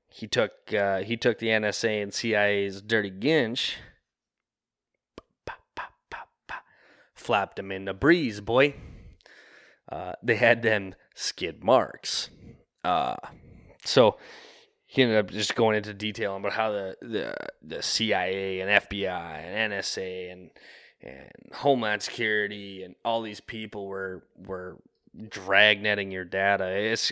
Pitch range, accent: 95-110 Hz, American